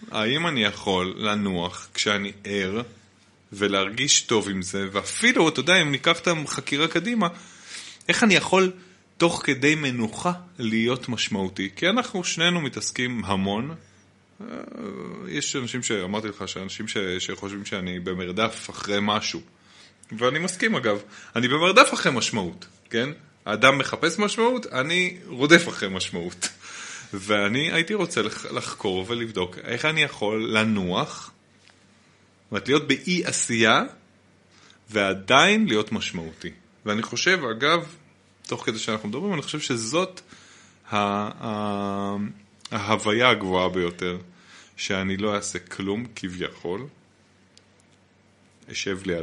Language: Hebrew